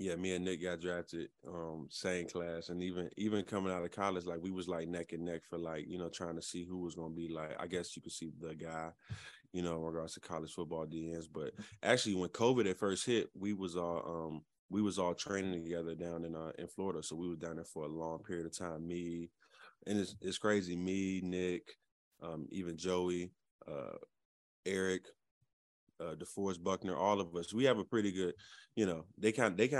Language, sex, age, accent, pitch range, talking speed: English, male, 20-39, American, 85-95 Hz, 225 wpm